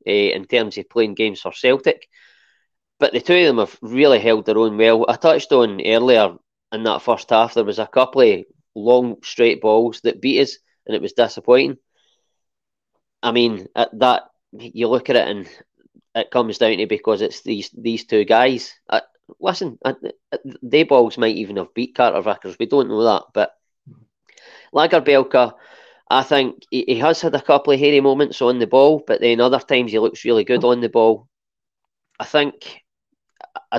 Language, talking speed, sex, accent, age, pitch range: English, 185 wpm, male, British, 20-39, 110-150 Hz